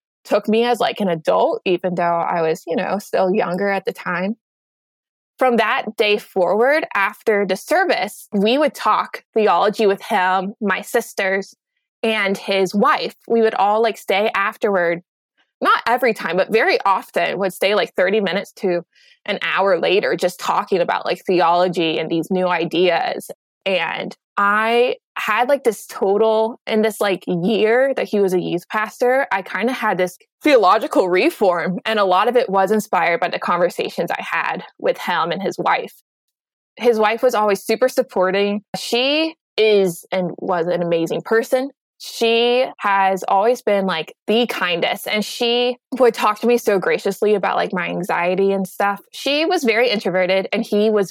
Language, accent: English, American